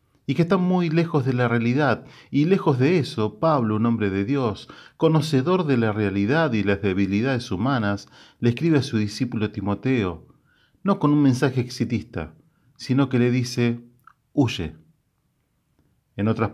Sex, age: male, 40-59